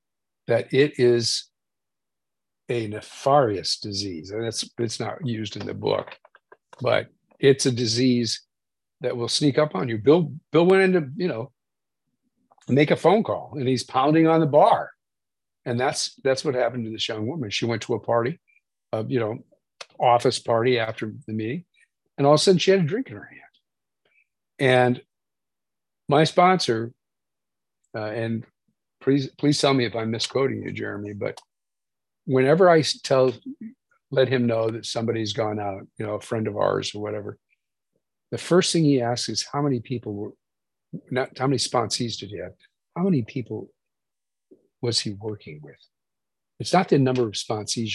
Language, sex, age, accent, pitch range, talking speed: English, male, 50-69, American, 110-145 Hz, 175 wpm